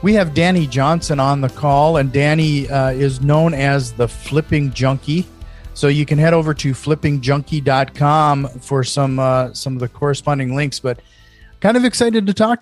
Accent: American